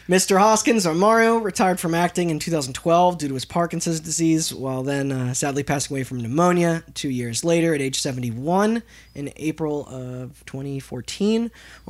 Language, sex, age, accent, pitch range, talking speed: English, male, 20-39, American, 145-190 Hz, 160 wpm